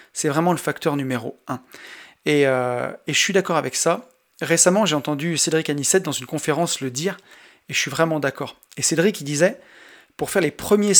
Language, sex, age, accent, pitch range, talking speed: French, male, 30-49, French, 145-180 Hz, 200 wpm